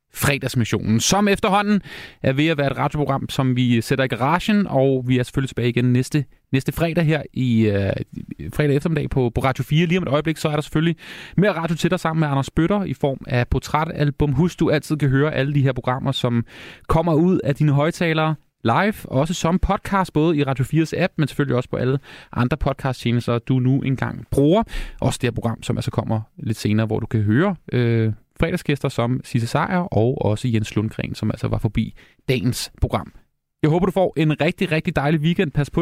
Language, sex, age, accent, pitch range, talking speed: Danish, male, 30-49, native, 120-160 Hz, 215 wpm